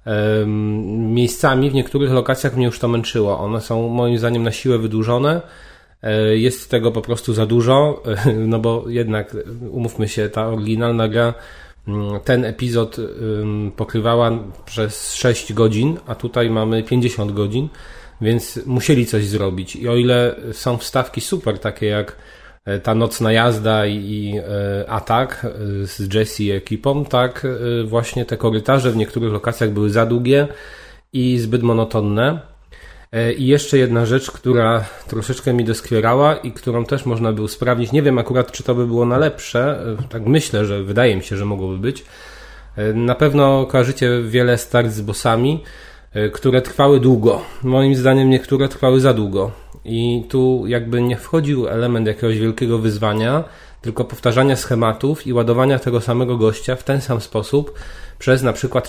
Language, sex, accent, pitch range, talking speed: Polish, male, native, 110-130 Hz, 150 wpm